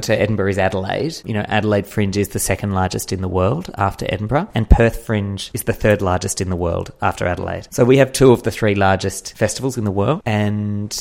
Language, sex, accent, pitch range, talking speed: English, male, Australian, 100-120 Hz, 230 wpm